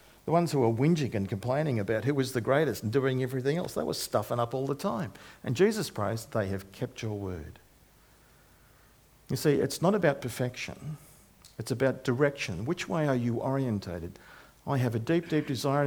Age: 50-69